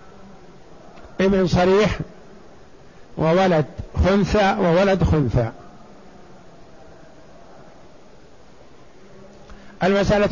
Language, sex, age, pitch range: Arabic, male, 60-79, 180-215 Hz